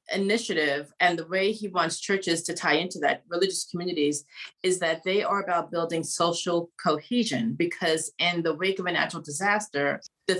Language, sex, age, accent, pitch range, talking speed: English, female, 30-49, American, 145-175 Hz, 175 wpm